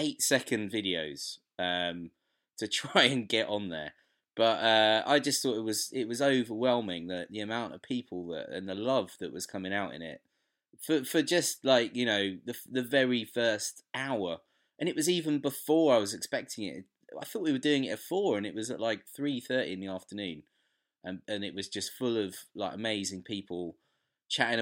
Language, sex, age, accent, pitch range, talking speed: English, male, 20-39, British, 90-115 Hz, 205 wpm